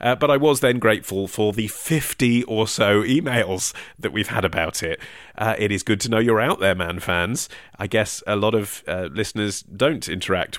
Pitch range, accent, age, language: 95-120 Hz, British, 30-49, English